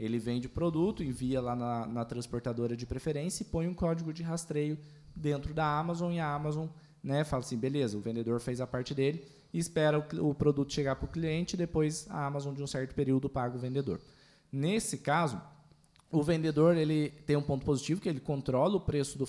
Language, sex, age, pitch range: Portuguese, male, 20-39, 130-155 Hz